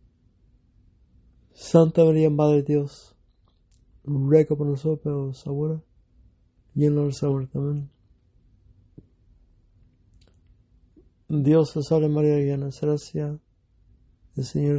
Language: English